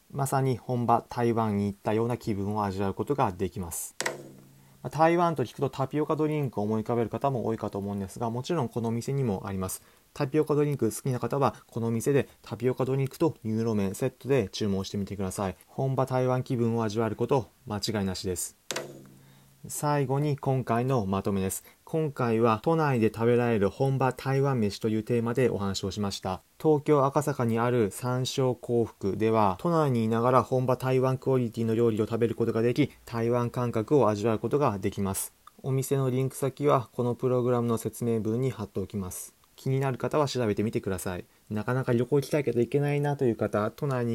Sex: male